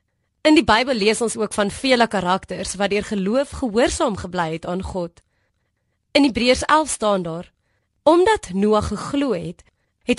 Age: 20-39